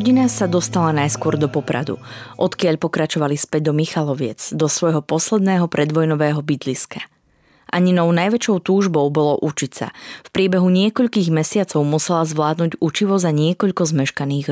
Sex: female